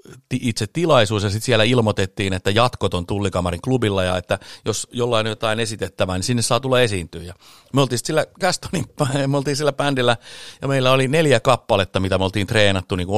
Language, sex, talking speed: Finnish, male, 210 wpm